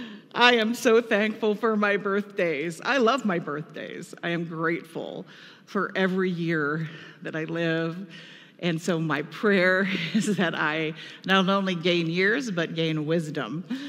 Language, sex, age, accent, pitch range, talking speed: English, female, 50-69, American, 180-250 Hz, 145 wpm